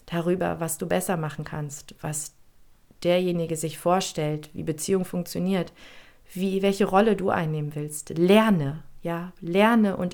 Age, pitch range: 40-59, 155-185 Hz